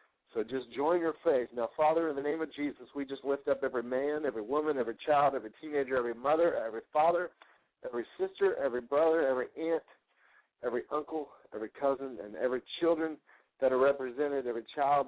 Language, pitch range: English, 130-155 Hz